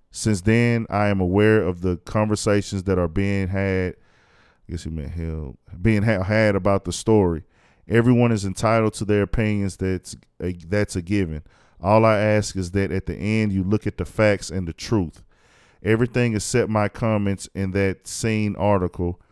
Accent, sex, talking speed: American, male, 175 wpm